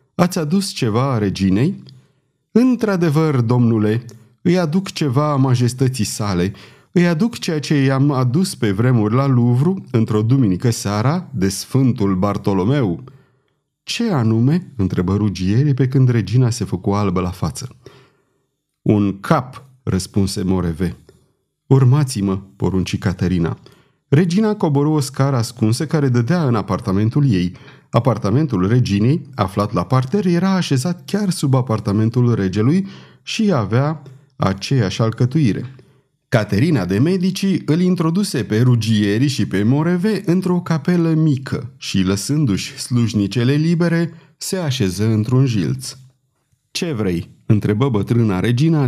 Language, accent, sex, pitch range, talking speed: Romanian, native, male, 105-150 Hz, 120 wpm